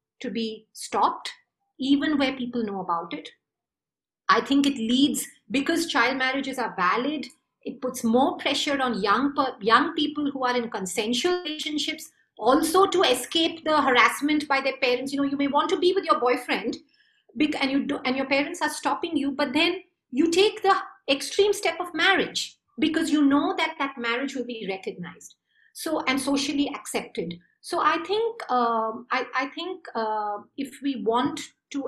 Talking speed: 175 wpm